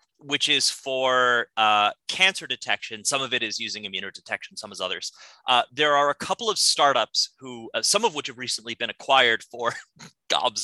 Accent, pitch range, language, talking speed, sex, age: American, 115-150 Hz, English, 185 wpm, male, 30-49